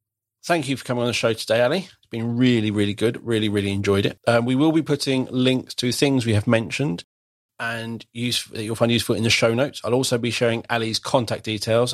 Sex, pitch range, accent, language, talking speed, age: male, 105-135 Hz, British, English, 230 wpm, 40-59